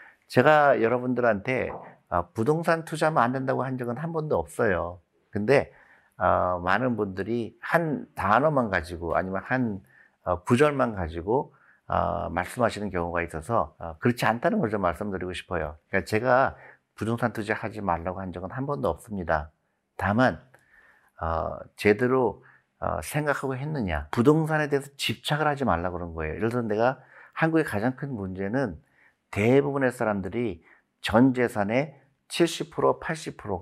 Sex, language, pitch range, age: male, Korean, 90-130 Hz, 50-69